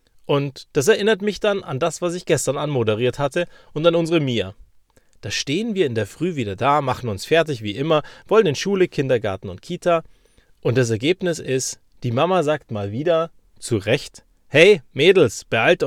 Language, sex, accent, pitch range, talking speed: German, male, German, 120-175 Hz, 185 wpm